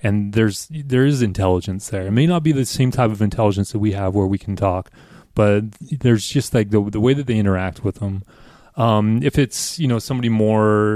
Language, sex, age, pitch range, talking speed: English, male, 30-49, 100-115 Hz, 225 wpm